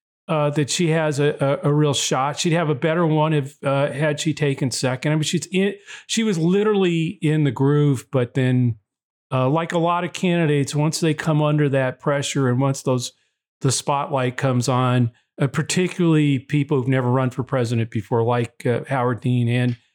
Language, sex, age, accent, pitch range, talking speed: English, male, 40-59, American, 125-150 Hz, 195 wpm